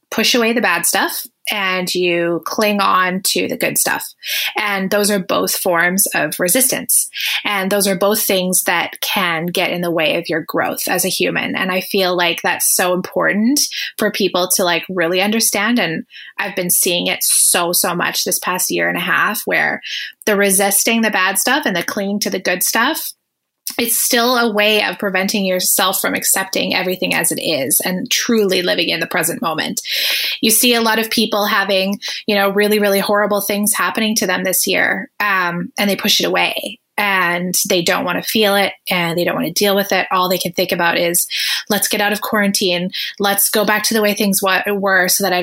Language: English